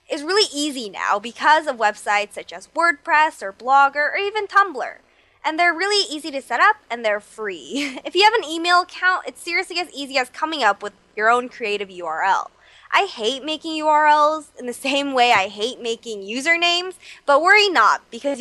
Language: English